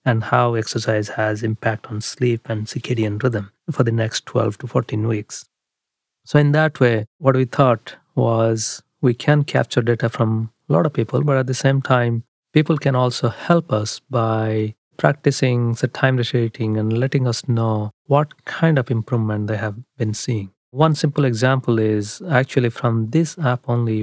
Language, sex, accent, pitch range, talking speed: English, male, Indian, 110-135 Hz, 175 wpm